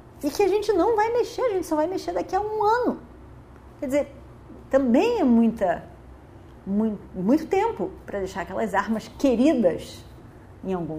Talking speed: 165 wpm